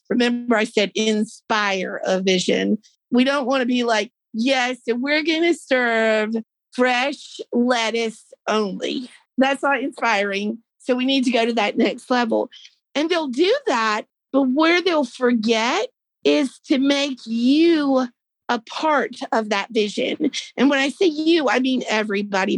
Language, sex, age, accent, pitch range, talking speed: English, female, 50-69, American, 225-305 Hz, 150 wpm